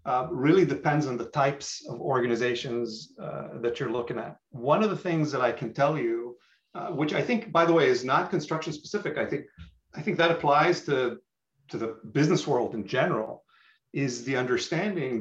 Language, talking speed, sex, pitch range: English, 195 wpm, male, 125-165 Hz